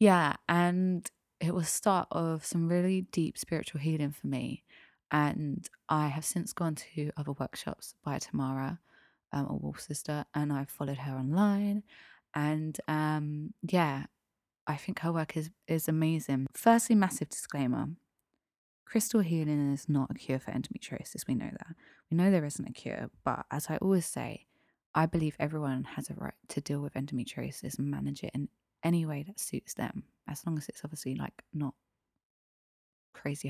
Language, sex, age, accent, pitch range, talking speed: English, female, 20-39, British, 140-175 Hz, 170 wpm